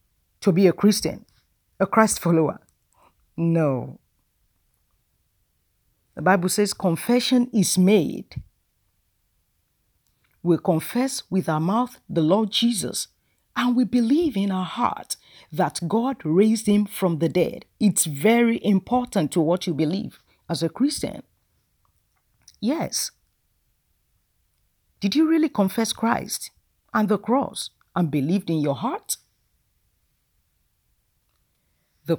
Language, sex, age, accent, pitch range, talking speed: English, female, 50-69, Nigerian, 165-245 Hz, 110 wpm